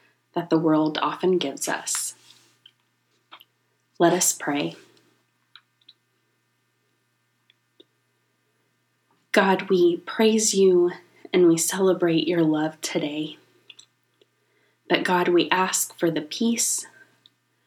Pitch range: 155-180 Hz